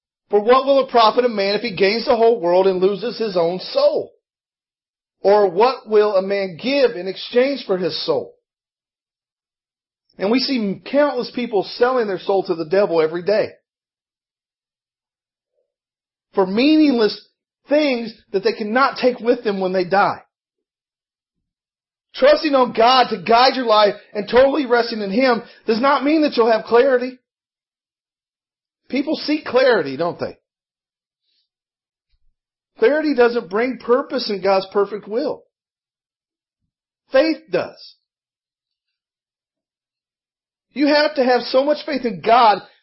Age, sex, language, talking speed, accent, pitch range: 40-59, male, English, 135 wpm, American, 205-270 Hz